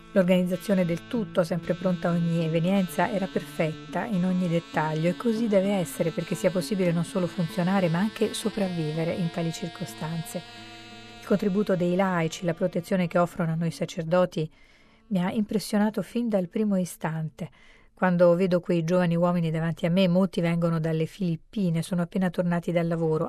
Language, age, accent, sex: Italian, 40-59, native, female